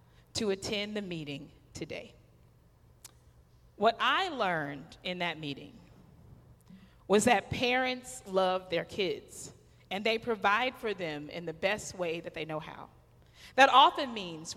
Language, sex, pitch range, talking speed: English, female, 175-265 Hz, 135 wpm